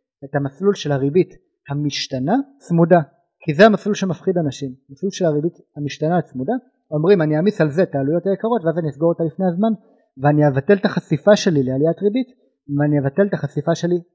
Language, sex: Hebrew, male